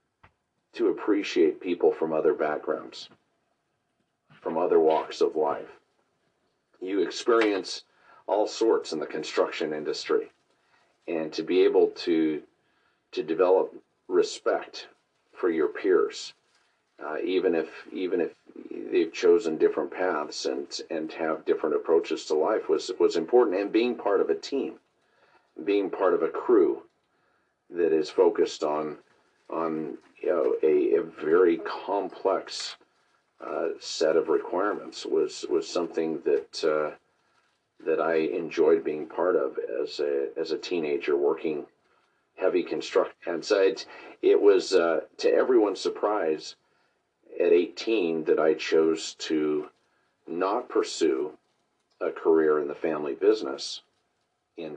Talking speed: 130 wpm